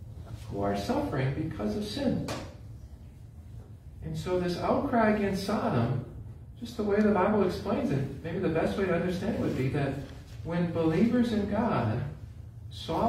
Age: 50-69